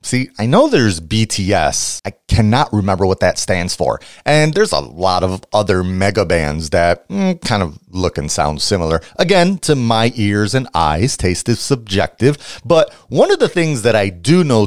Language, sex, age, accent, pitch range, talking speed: English, male, 30-49, American, 90-135 Hz, 190 wpm